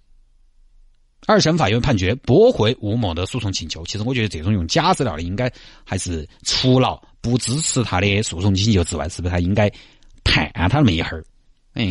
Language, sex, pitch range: Chinese, male, 90-125 Hz